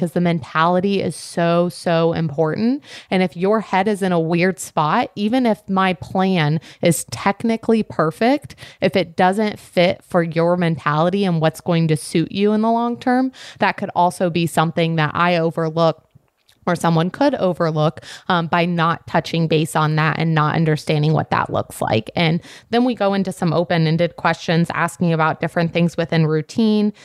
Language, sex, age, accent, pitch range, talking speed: English, female, 20-39, American, 160-190 Hz, 175 wpm